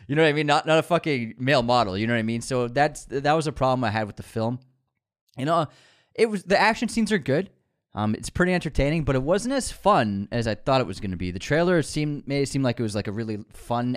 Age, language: 20-39, English